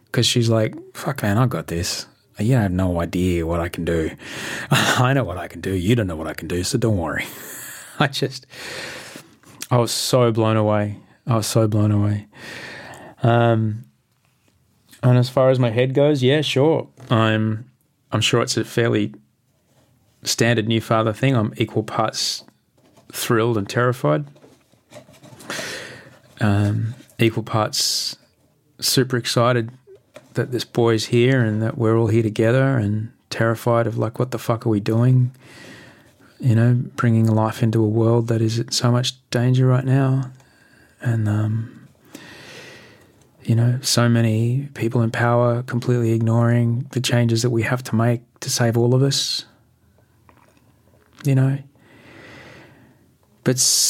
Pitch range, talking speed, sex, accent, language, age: 110-130 Hz, 150 wpm, male, Australian, English, 20-39